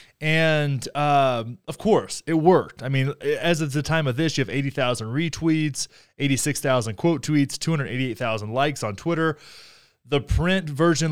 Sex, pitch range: male, 125-165 Hz